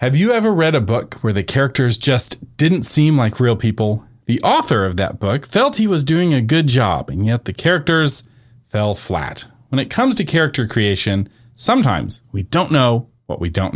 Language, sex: English, male